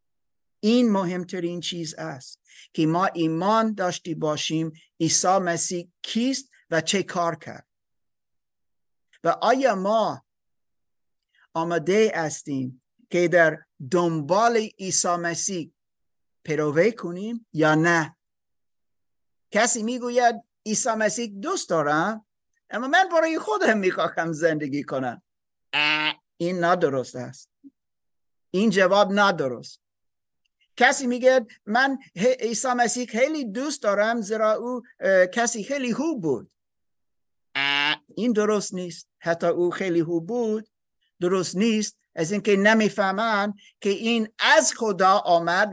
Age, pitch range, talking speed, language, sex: 50-69, 170-235 Hz, 105 wpm, Persian, male